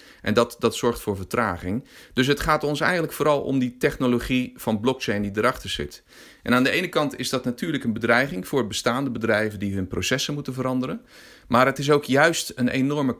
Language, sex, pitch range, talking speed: English, male, 105-135 Hz, 205 wpm